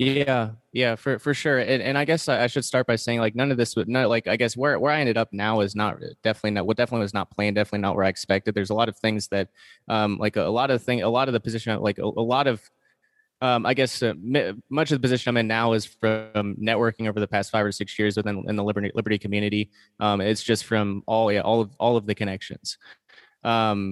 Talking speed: 270 wpm